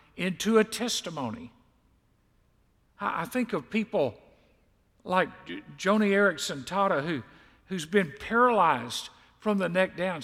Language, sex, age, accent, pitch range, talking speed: English, male, 50-69, American, 145-220 Hz, 105 wpm